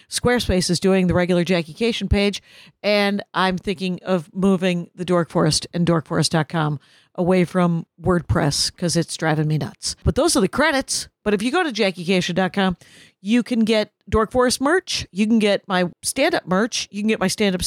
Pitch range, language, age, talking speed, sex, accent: 180-230 Hz, English, 50-69, 185 wpm, female, American